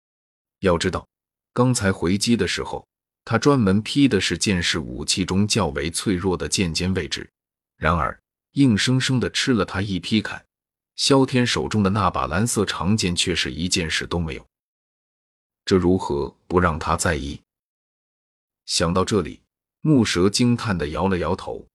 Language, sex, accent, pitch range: Chinese, male, native, 85-110 Hz